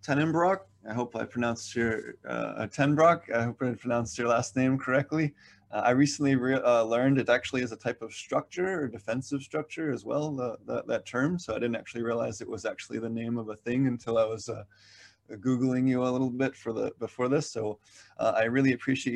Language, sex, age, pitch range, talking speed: English, male, 20-39, 110-130 Hz, 215 wpm